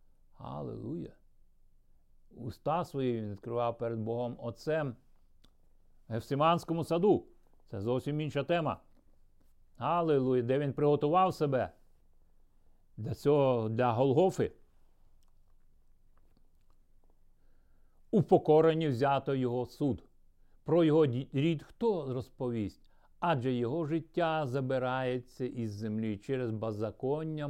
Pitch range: 120-155 Hz